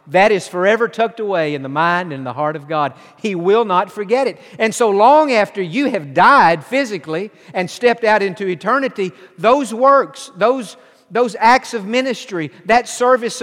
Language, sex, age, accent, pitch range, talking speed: English, male, 50-69, American, 175-225 Hz, 180 wpm